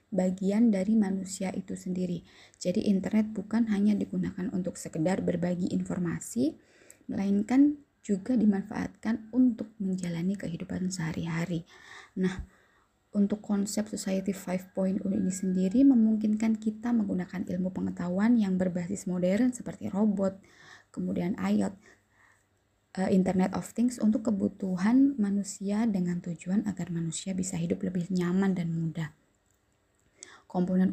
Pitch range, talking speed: 180-215 Hz, 115 wpm